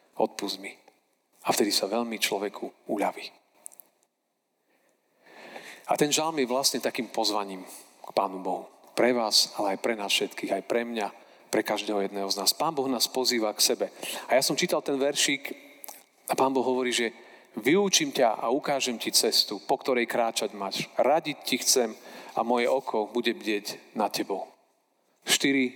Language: Slovak